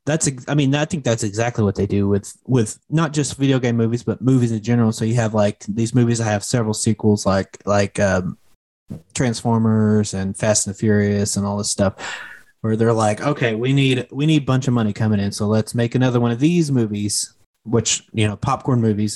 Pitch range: 105-130 Hz